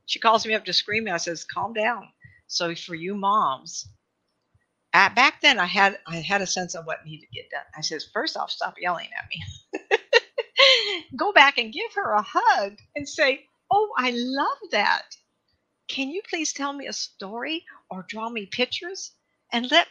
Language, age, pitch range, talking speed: English, 50-69, 170-245 Hz, 190 wpm